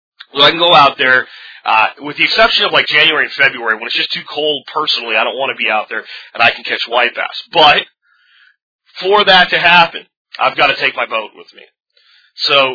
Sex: male